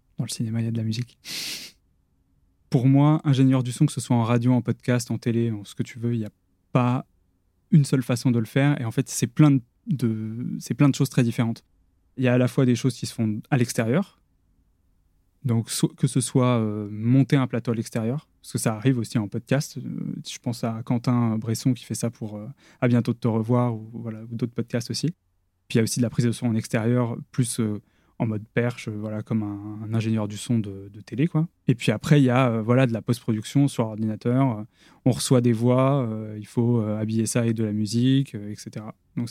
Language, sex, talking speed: French, male, 245 wpm